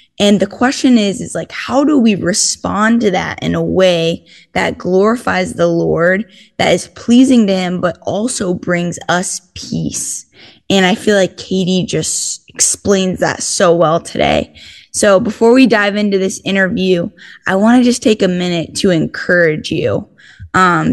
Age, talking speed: 10-29, 165 wpm